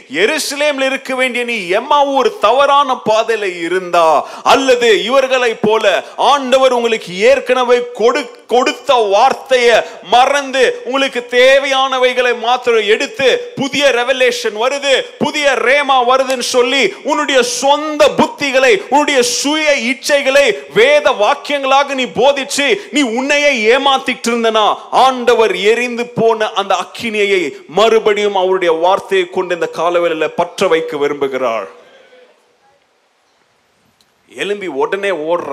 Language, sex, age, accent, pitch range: Tamil, male, 30-49, native, 210-290 Hz